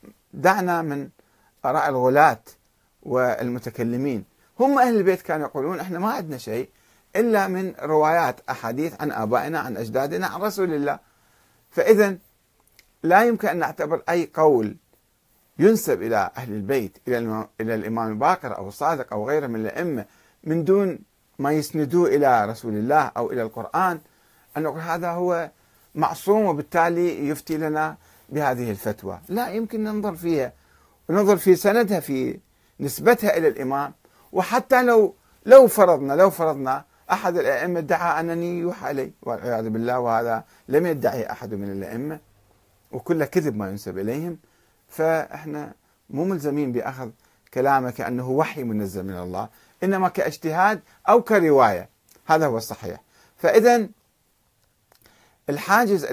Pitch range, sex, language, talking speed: 115-180 Hz, male, Arabic, 130 wpm